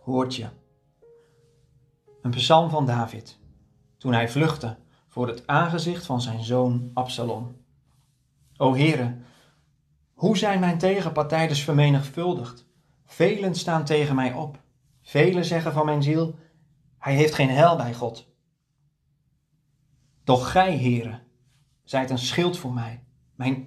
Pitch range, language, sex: 130-155 Hz, Dutch, male